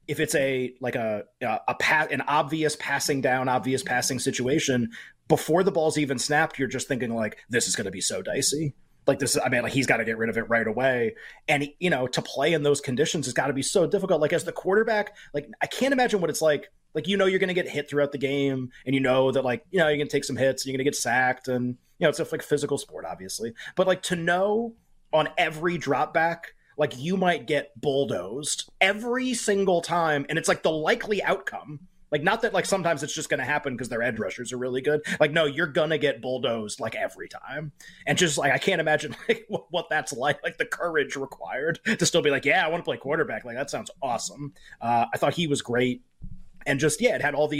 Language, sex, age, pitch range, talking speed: English, male, 30-49, 130-165 Hz, 250 wpm